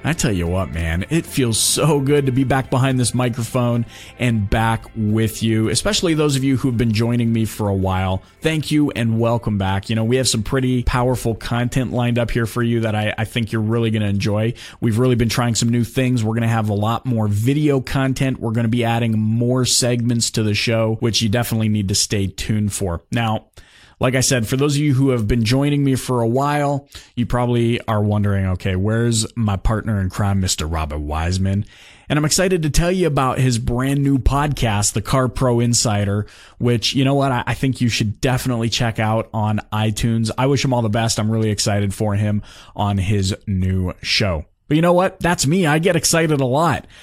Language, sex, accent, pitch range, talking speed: English, male, American, 105-130 Hz, 220 wpm